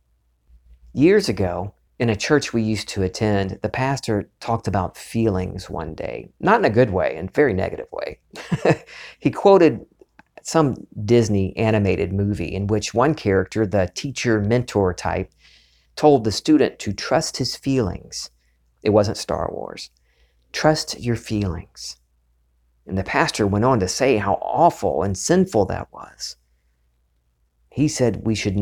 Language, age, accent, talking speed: English, 50-69, American, 150 wpm